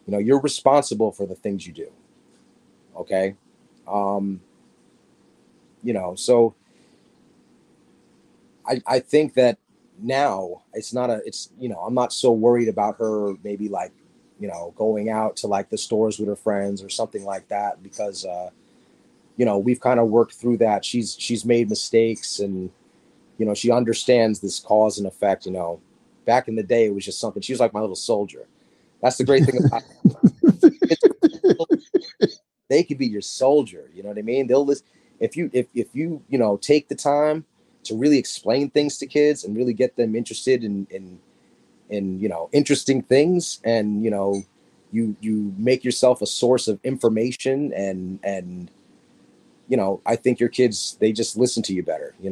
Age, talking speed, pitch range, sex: 30-49, 180 wpm, 100-130 Hz, male